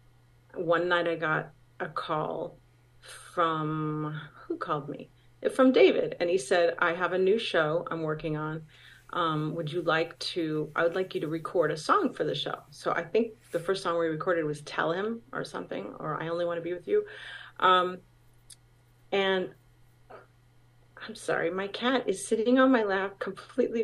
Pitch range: 155-220 Hz